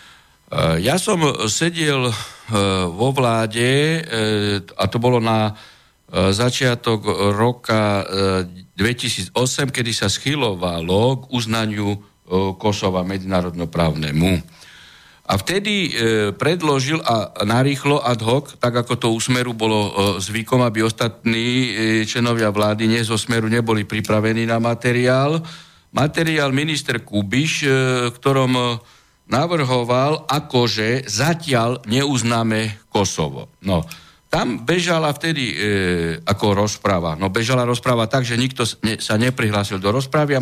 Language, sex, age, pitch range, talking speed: Slovak, male, 60-79, 105-135 Hz, 105 wpm